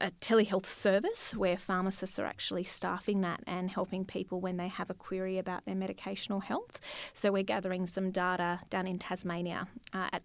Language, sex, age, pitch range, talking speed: English, female, 30-49, 180-210 Hz, 180 wpm